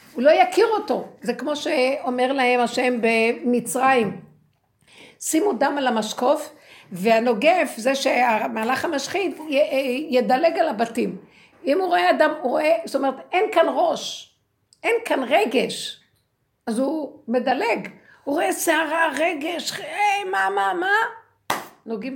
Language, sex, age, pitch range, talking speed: Hebrew, female, 60-79, 195-280 Hz, 125 wpm